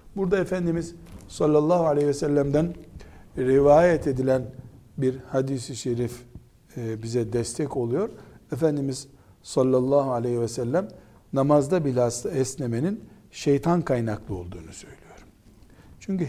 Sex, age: male, 60-79